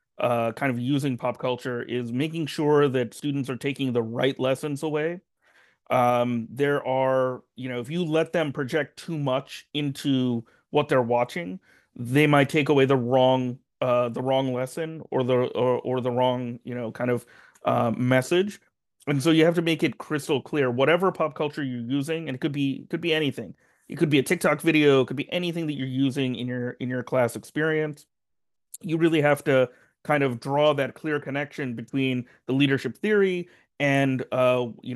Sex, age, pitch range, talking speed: male, 30-49, 125-150 Hz, 190 wpm